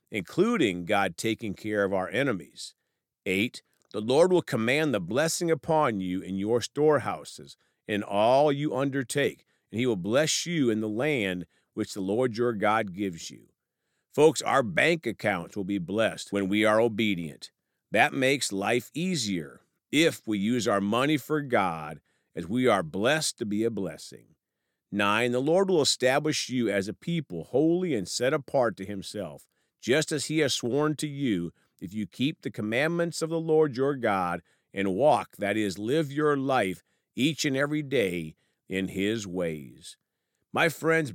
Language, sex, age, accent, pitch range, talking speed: English, male, 40-59, American, 100-150 Hz, 170 wpm